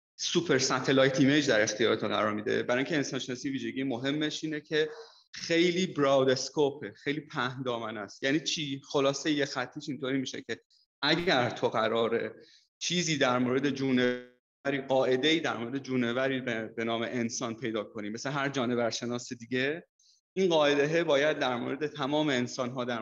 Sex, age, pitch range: male, 30-49, 125-150 Hz